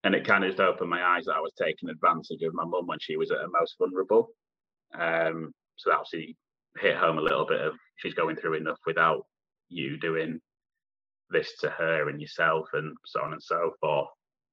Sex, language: male, English